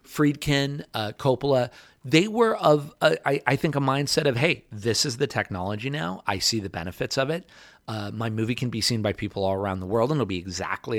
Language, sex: English, male